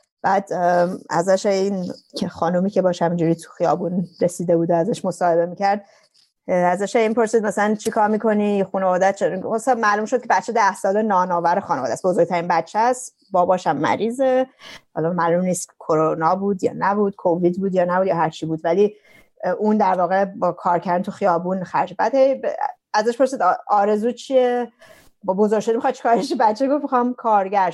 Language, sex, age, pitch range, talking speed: Persian, female, 30-49, 180-230 Hz, 170 wpm